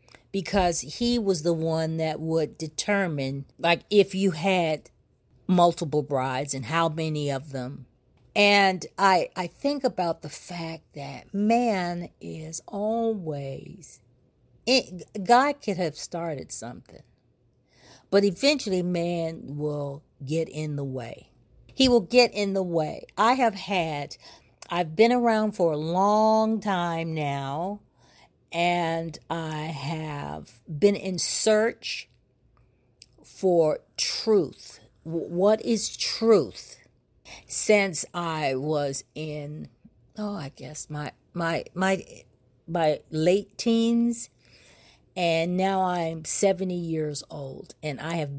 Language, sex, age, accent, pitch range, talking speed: English, female, 50-69, American, 145-195 Hz, 115 wpm